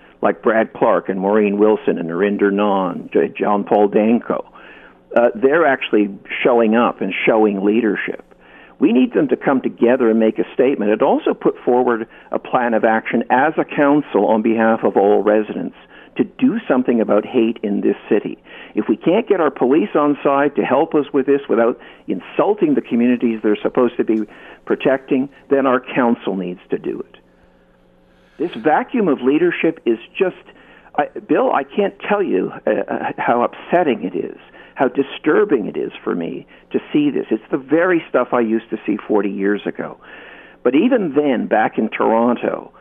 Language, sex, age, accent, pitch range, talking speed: English, male, 50-69, American, 105-140 Hz, 175 wpm